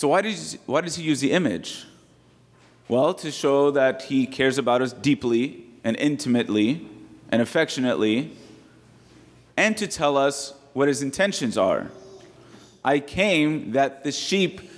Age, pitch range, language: 30-49, 130-160 Hz, English